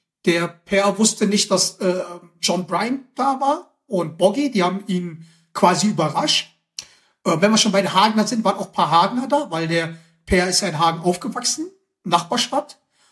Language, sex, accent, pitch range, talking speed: German, male, German, 175-225 Hz, 185 wpm